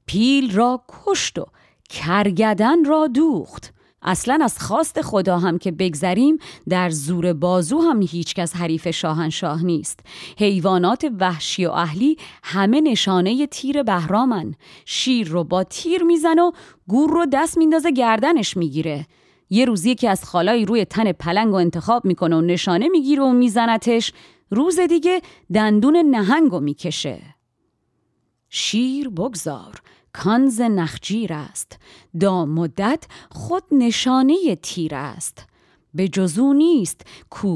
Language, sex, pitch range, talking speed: Persian, female, 170-255 Hz, 125 wpm